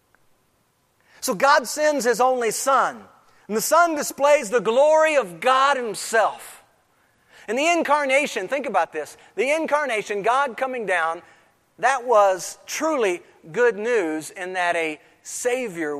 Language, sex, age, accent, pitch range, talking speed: English, male, 40-59, American, 180-285 Hz, 130 wpm